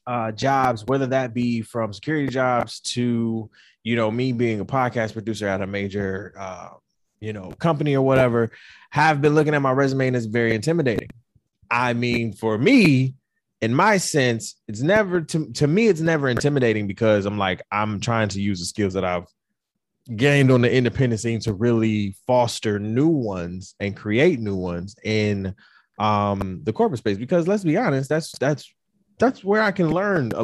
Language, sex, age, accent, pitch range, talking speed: English, male, 20-39, American, 110-155 Hz, 180 wpm